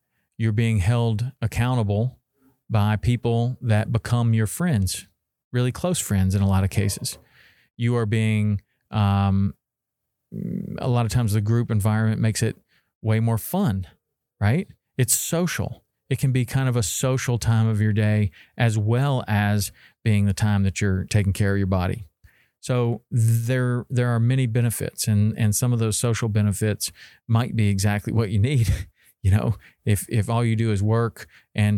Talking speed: 170 wpm